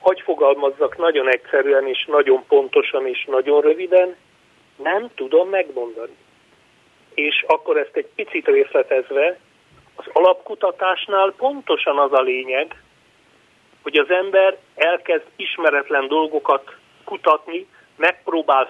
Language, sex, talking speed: Hungarian, male, 105 wpm